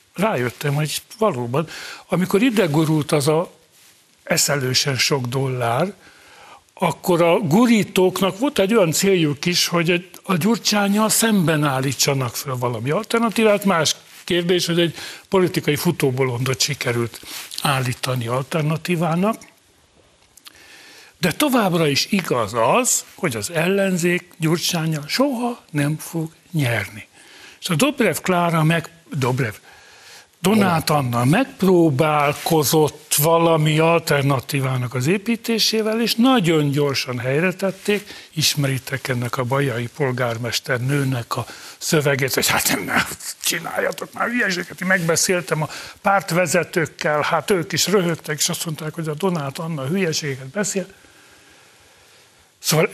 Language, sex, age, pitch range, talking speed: Hungarian, male, 60-79, 145-195 Hz, 110 wpm